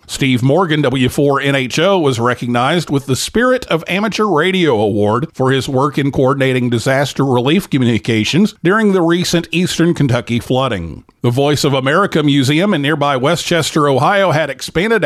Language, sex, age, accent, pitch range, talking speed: English, male, 50-69, American, 130-185 Hz, 150 wpm